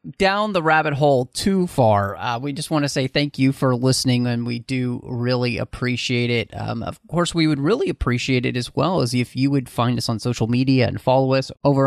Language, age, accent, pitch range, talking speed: English, 30-49, American, 115-135 Hz, 225 wpm